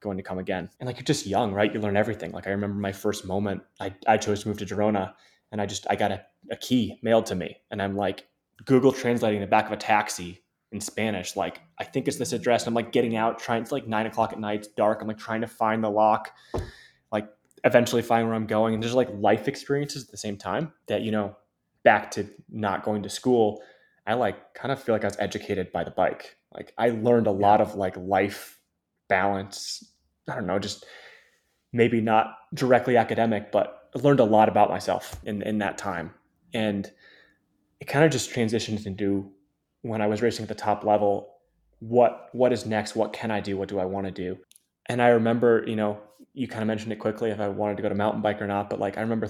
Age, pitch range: 20-39, 100-115 Hz